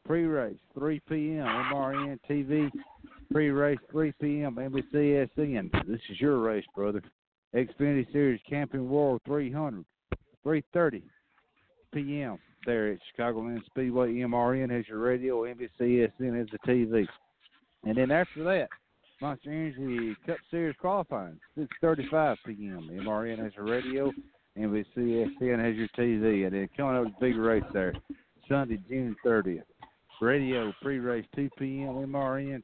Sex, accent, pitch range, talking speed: male, American, 115-150 Hz, 125 wpm